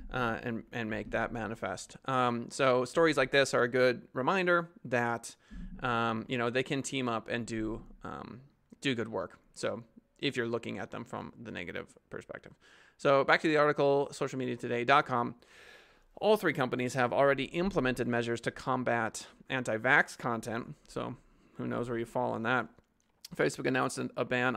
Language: English